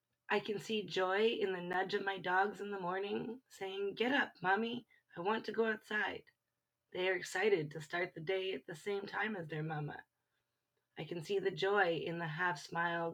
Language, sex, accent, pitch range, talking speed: English, female, American, 180-220 Hz, 200 wpm